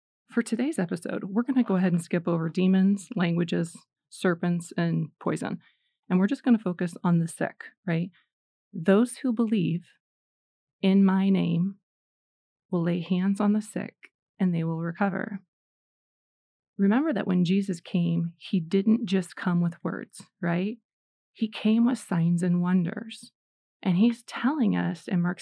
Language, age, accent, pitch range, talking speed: English, 30-49, American, 180-215 Hz, 155 wpm